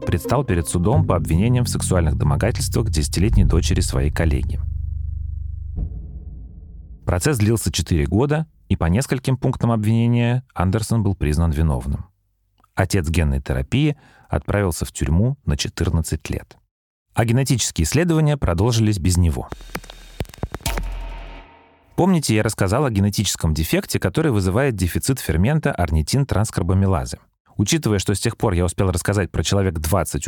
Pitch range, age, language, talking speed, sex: 85-115 Hz, 30-49, Russian, 125 wpm, male